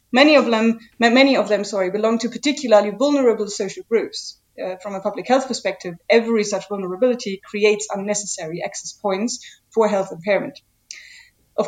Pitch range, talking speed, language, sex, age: 190-245 Hz, 155 wpm, English, female, 30-49